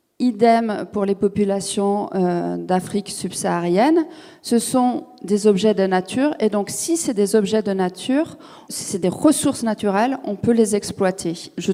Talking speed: 150 wpm